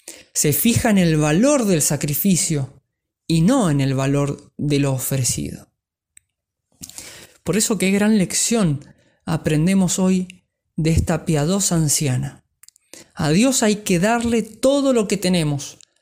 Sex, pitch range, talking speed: male, 140-190 Hz, 130 wpm